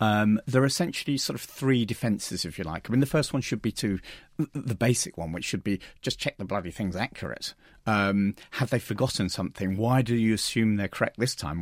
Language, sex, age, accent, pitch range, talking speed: English, male, 40-59, British, 95-125 Hz, 225 wpm